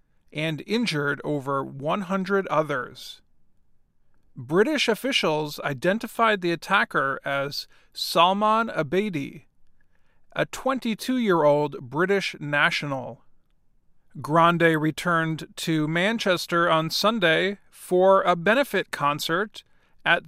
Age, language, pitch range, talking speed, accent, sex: 40-59, English, 155-210 Hz, 85 wpm, American, male